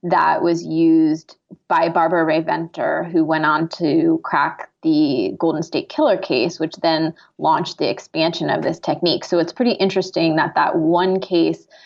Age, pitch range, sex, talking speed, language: 20-39, 165-205 Hz, female, 165 wpm, English